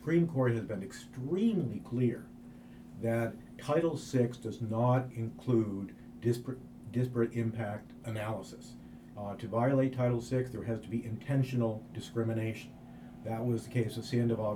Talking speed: 140 wpm